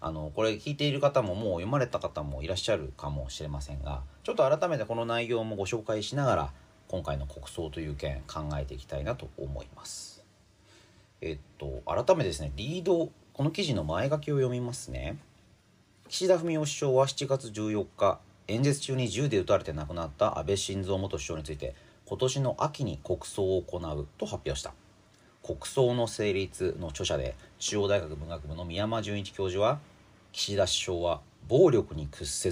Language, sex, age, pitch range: Japanese, male, 40-59, 80-130 Hz